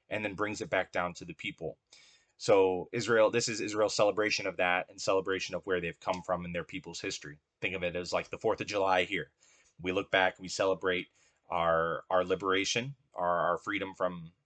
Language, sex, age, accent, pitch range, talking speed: English, male, 30-49, American, 90-110 Hz, 210 wpm